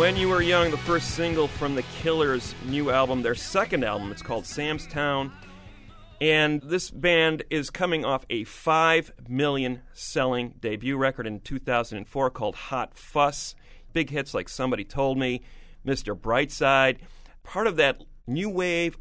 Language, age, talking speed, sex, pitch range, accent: English, 40-59, 155 wpm, male, 115-145 Hz, American